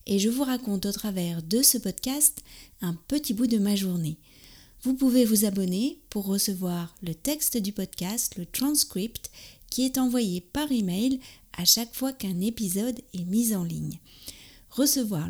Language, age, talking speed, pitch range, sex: French, 40-59, 165 wpm, 180-240 Hz, female